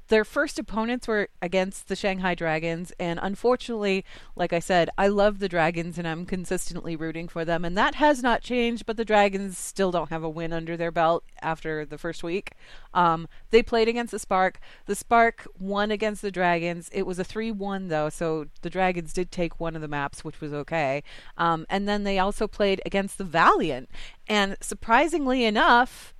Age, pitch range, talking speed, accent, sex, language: 30-49, 170-205 Hz, 190 wpm, American, female, English